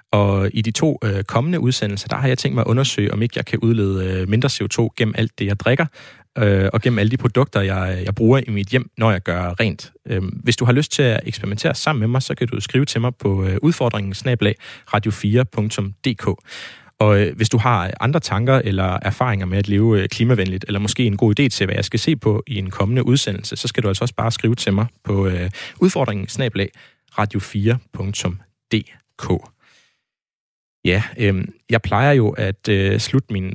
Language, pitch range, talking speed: Danish, 100-120 Hz, 185 wpm